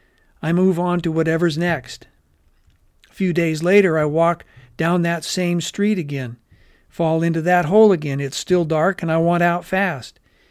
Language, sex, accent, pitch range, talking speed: English, male, American, 150-175 Hz, 170 wpm